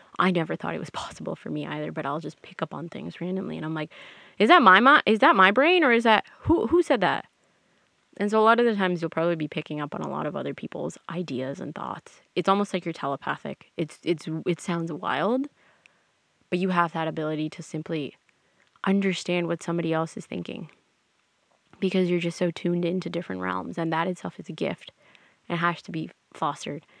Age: 20-39